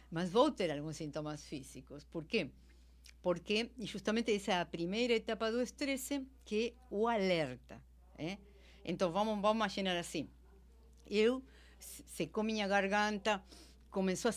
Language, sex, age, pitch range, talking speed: Portuguese, female, 50-69, 160-235 Hz, 135 wpm